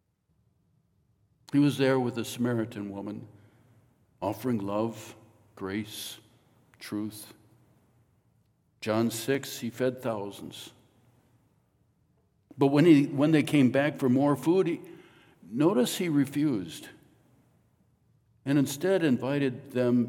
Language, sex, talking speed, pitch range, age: English, male, 95 wpm, 110-130 Hz, 60-79